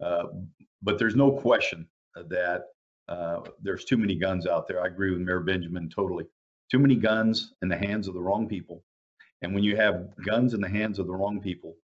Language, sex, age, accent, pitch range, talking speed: English, male, 50-69, American, 90-105 Hz, 205 wpm